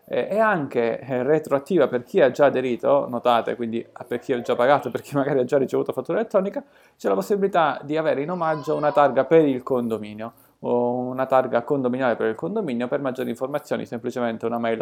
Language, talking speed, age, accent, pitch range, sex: Italian, 190 wpm, 20-39, native, 120-150 Hz, male